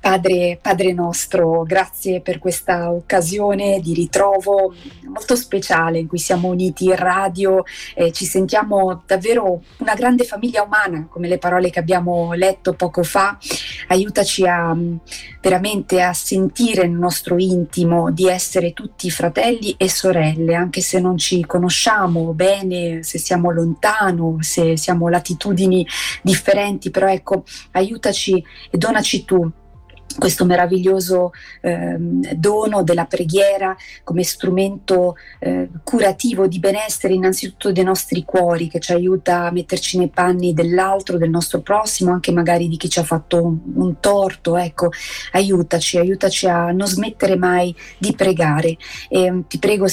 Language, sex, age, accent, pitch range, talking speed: Italian, female, 20-39, native, 175-195 Hz, 140 wpm